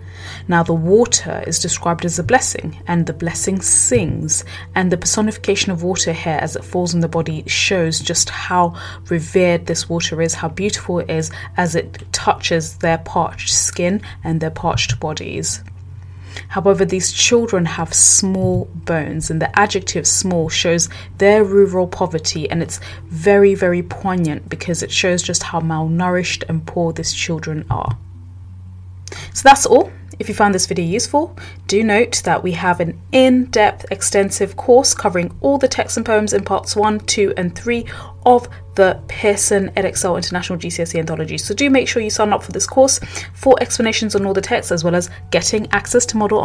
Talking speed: 175 wpm